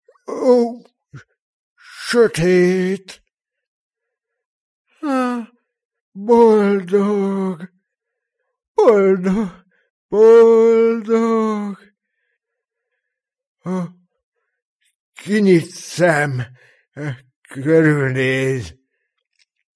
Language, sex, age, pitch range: Hungarian, male, 60-79, 160-260 Hz